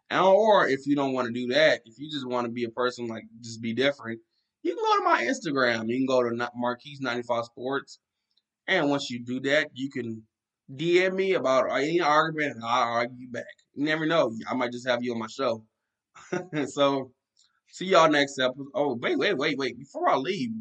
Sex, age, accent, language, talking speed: male, 20-39, American, English, 205 wpm